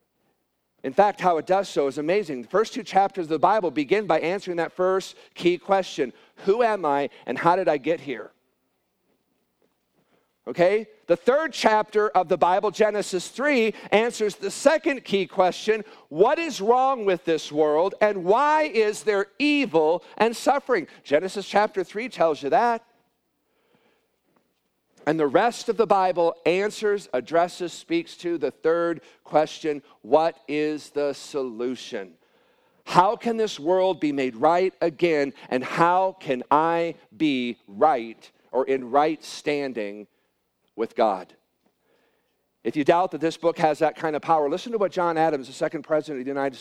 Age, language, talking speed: 50-69, English, 160 wpm